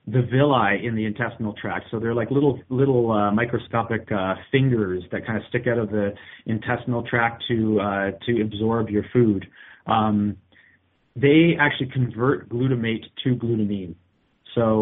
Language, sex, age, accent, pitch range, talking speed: English, male, 30-49, American, 105-125 Hz, 160 wpm